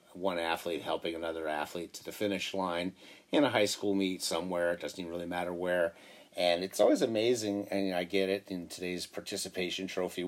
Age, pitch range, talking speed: 40-59, 95-105 Hz, 195 wpm